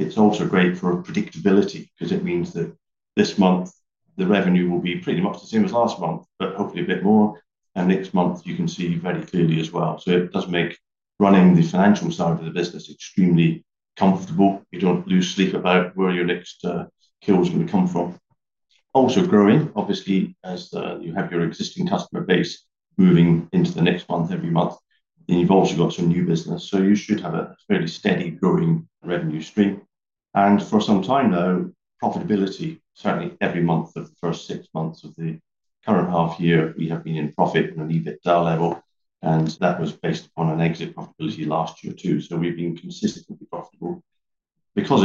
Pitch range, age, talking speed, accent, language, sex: 85-100 Hz, 40-59, 190 wpm, British, English, male